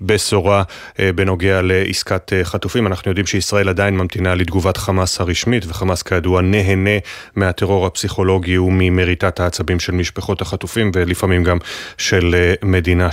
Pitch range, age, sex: 90-105 Hz, 30-49, male